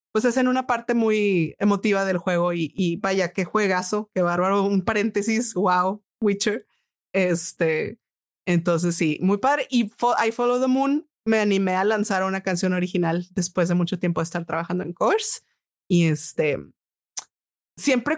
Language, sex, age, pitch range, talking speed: Spanish, female, 30-49, 180-230 Hz, 165 wpm